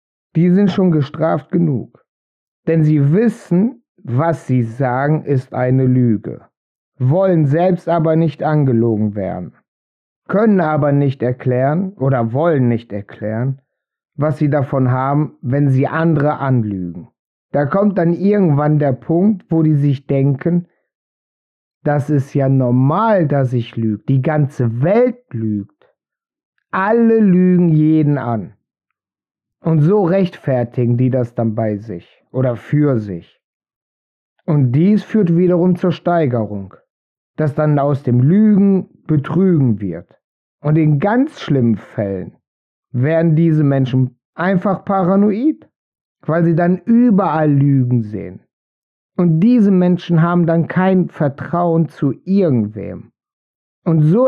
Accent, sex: German, male